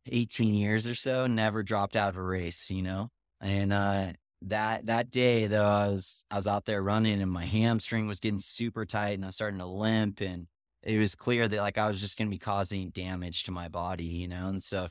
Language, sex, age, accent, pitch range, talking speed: English, male, 20-39, American, 95-110 Hz, 240 wpm